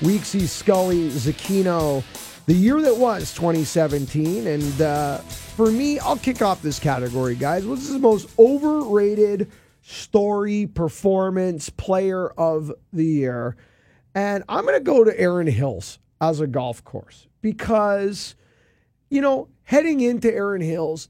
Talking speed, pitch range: 135 wpm, 135-200 Hz